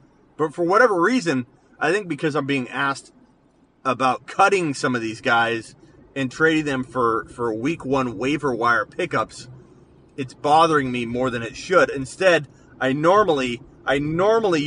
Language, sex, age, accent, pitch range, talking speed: English, male, 30-49, American, 120-145 Hz, 150 wpm